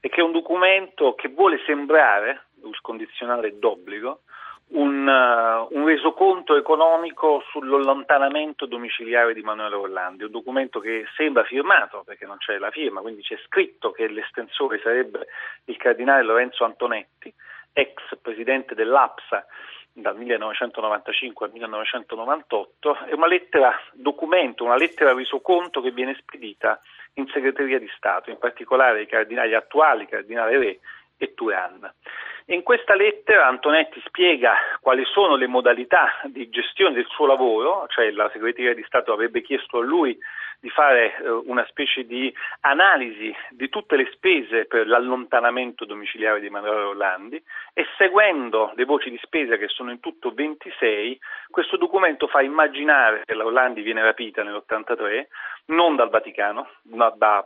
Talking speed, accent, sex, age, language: 140 wpm, native, male, 40-59, Italian